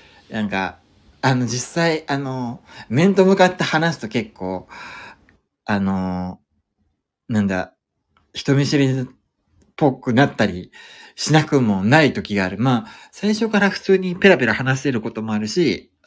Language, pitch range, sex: Japanese, 95-125 Hz, male